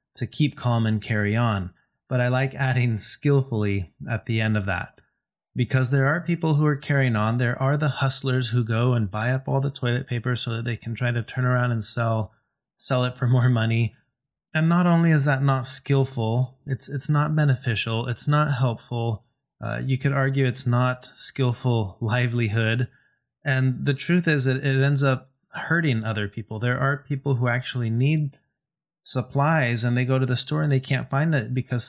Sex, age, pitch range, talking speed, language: male, 30-49, 115-135 Hz, 195 wpm, English